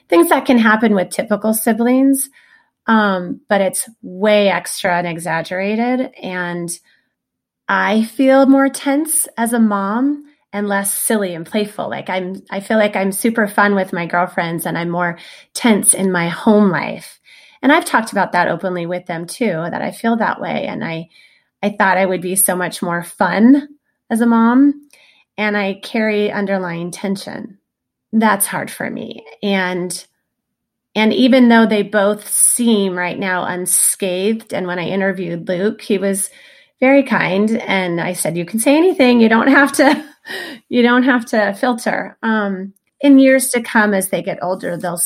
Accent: American